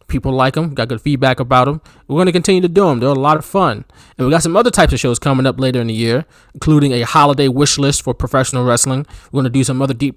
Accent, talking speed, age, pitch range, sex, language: American, 290 wpm, 20-39, 120-155 Hz, male, English